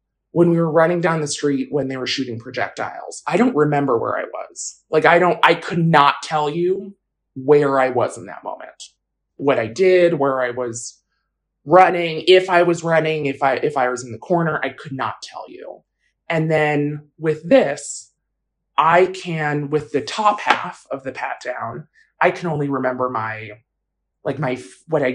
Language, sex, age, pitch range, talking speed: English, male, 20-39, 135-170 Hz, 190 wpm